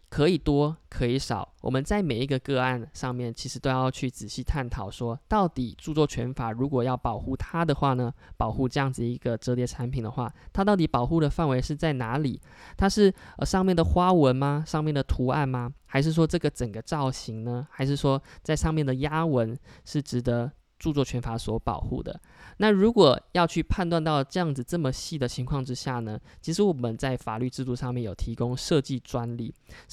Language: Chinese